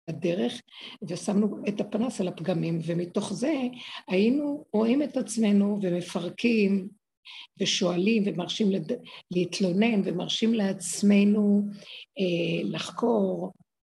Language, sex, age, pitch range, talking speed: Hebrew, female, 60-79, 185-220 Hz, 85 wpm